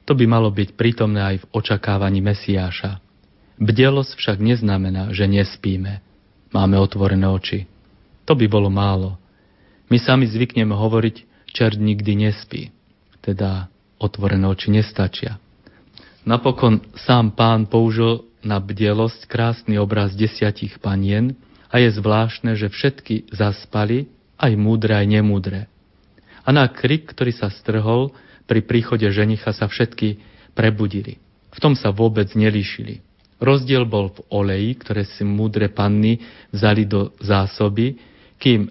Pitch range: 100-115 Hz